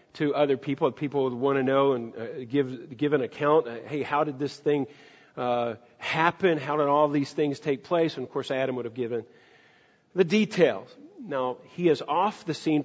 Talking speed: 195 wpm